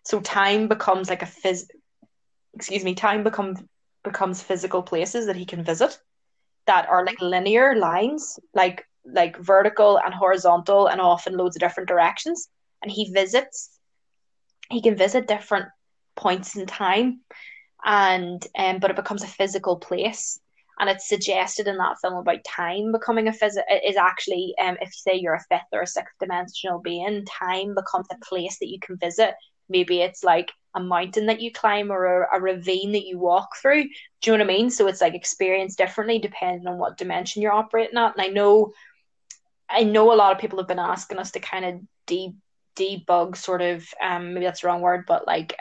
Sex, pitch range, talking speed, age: female, 180-210 Hz, 190 wpm, 10-29